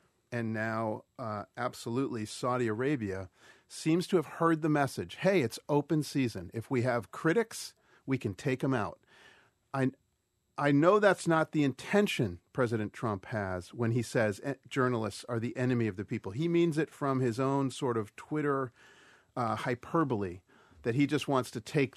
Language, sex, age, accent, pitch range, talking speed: English, male, 40-59, American, 110-145 Hz, 170 wpm